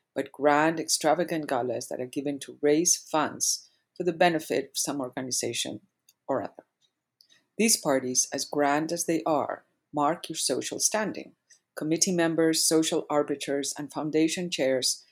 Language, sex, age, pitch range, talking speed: English, female, 50-69, 145-180 Hz, 145 wpm